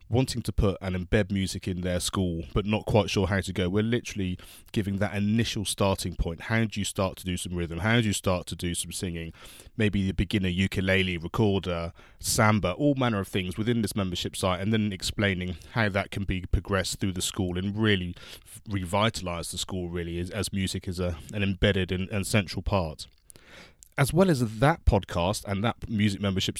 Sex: male